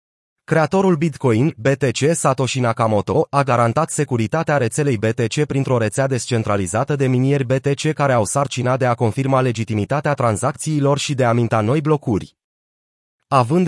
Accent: native